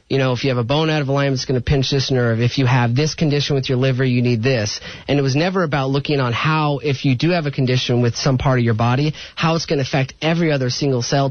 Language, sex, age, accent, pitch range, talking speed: English, male, 30-49, American, 120-145 Hz, 295 wpm